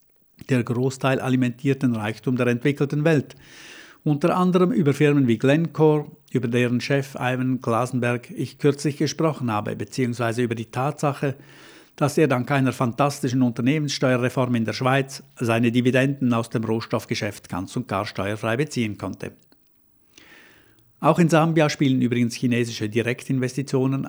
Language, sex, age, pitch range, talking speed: German, male, 60-79, 120-150 Hz, 130 wpm